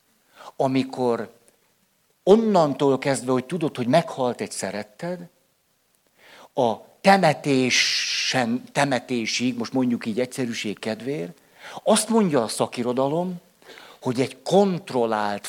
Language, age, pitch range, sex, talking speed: Hungarian, 60-79, 120-160 Hz, male, 95 wpm